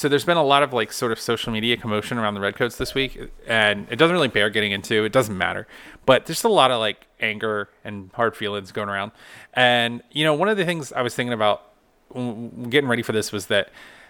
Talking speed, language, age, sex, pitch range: 240 wpm, English, 30-49, male, 105-125 Hz